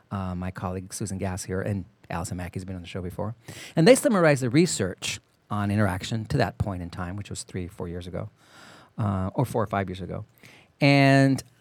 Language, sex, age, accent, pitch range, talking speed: English, male, 40-59, American, 100-135 Hz, 205 wpm